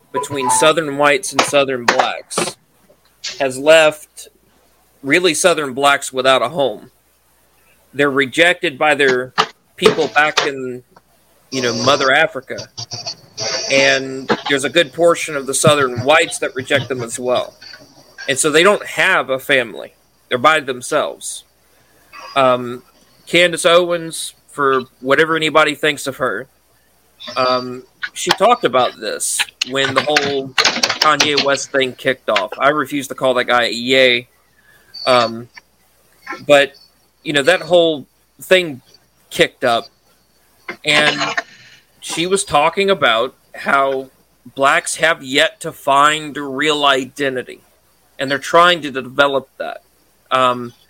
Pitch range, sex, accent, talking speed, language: 130-155 Hz, male, American, 125 wpm, English